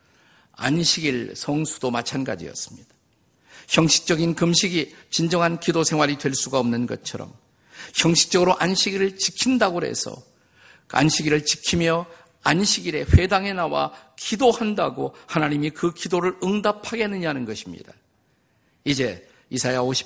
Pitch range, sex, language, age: 135-180 Hz, male, Korean, 50-69